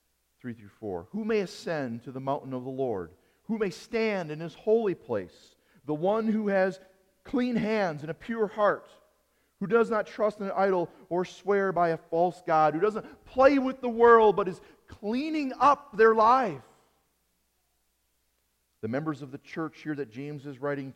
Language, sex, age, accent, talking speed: English, male, 40-59, American, 175 wpm